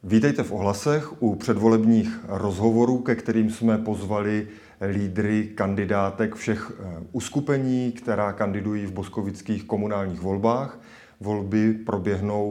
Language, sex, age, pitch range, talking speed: Czech, male, 30-49, 100-115 Hz, 105 wpm